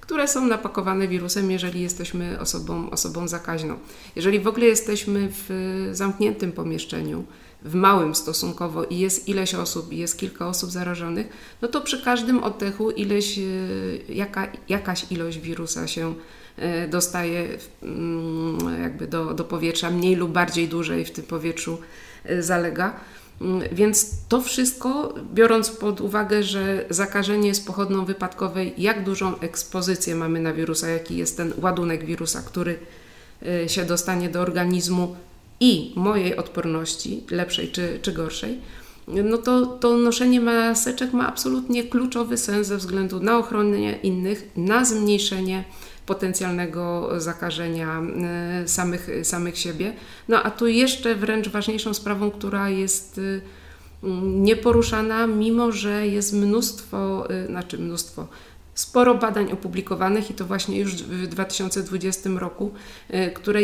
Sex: female